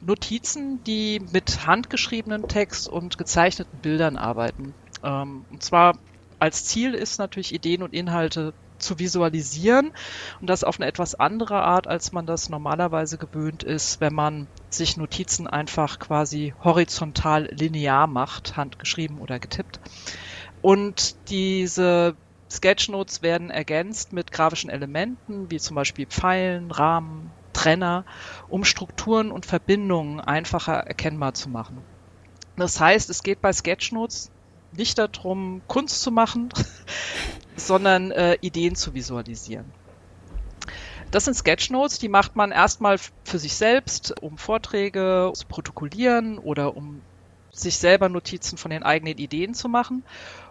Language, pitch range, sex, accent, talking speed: German, 145-195 Hz, female, German, 125 wpm